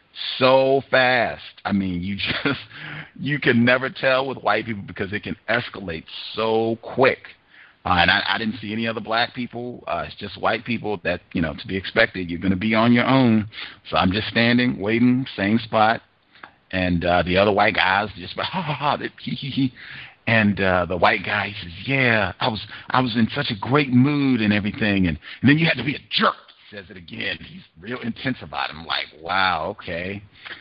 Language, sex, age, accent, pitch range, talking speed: English, male, 50-69, American, 90-115 Hz, 200 wpm